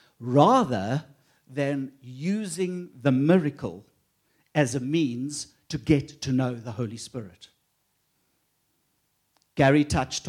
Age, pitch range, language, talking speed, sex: 60-79, 130-165 Hz, English, 100 wpm, male